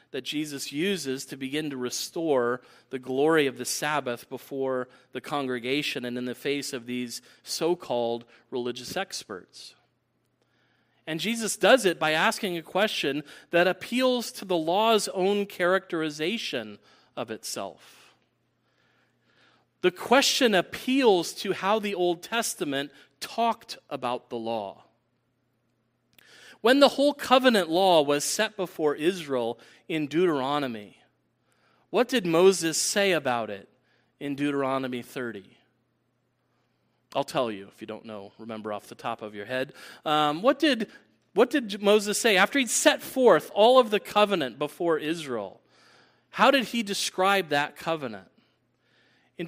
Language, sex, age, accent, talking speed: English, male, 40-59, American, 135 wpm